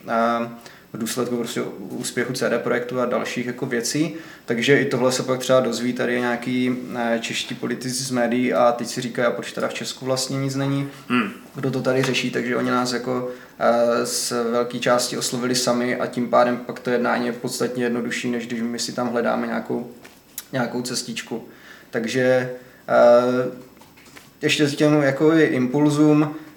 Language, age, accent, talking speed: Czech, 20-39, native, 165 wpm